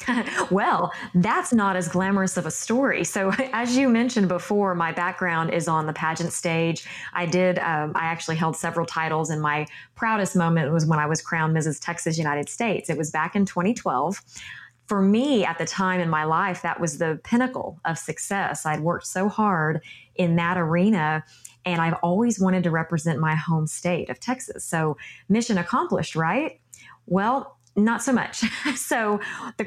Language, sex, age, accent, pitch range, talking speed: English, female, 20-39, American, 160-210 Hz, 180 wpm